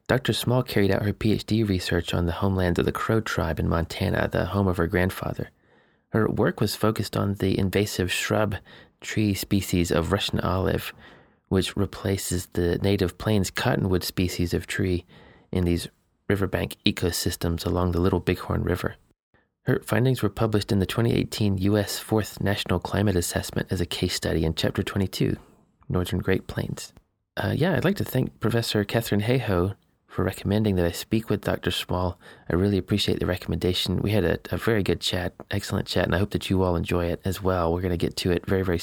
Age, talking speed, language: 30-49, 190 wpm, English